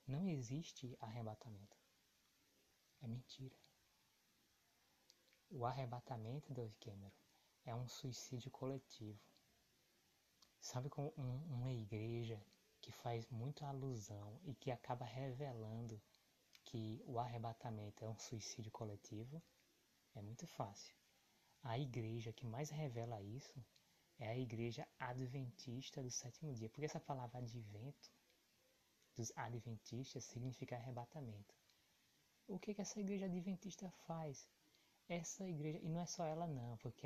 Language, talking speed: Portuguese, 115 wpm